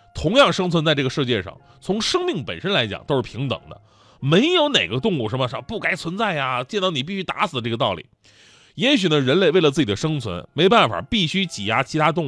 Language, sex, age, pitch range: Chinese, male, 20-39, 125-200 Hz